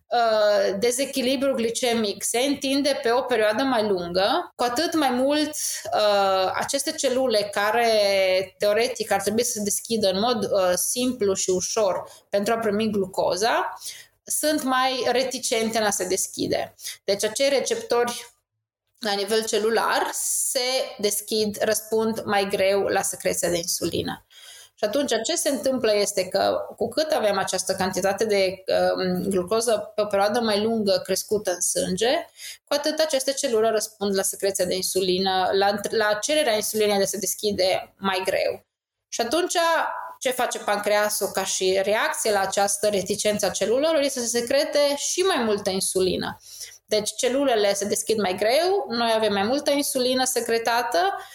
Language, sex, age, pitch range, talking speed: Romanian, female, 20-39, 195-260 Hz, 150 wpm